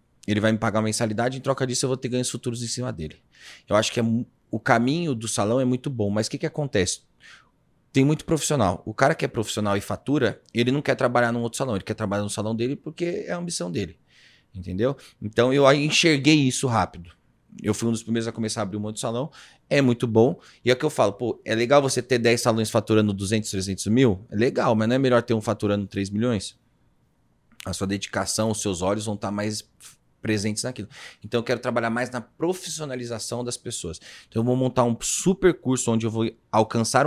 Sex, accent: male, Brazilian